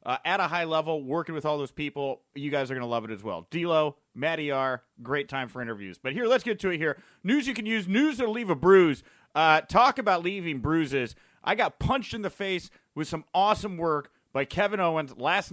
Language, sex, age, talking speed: English, male, 30-49, 235 wpm